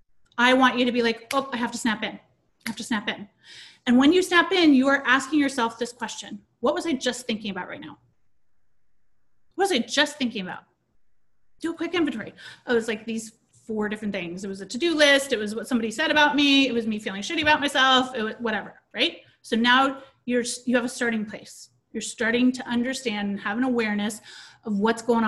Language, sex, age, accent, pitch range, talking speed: English, female, 30-49, American, 205-275 Hz, 225 wpm